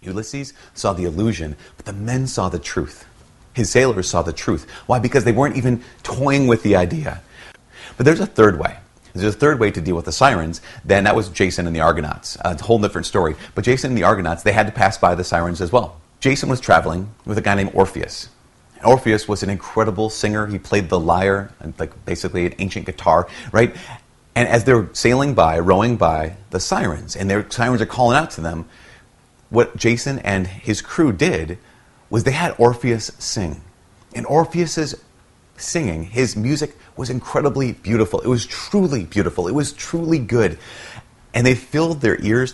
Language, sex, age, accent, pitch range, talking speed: English, male, 40-59, American, 95-125 Hz, 190 wpm